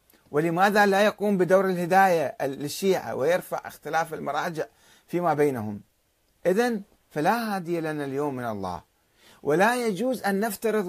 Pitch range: 125-190 Hz